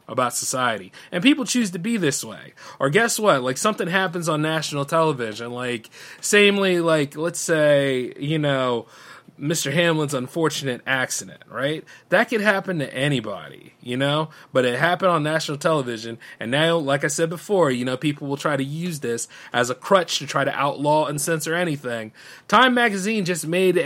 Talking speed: 180 wpm